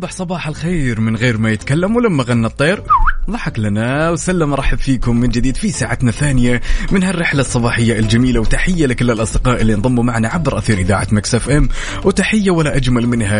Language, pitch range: Arabic, 105-145 Hz